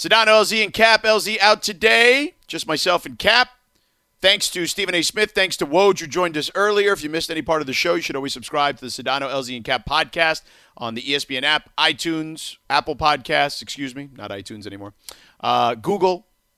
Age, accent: 40-59, American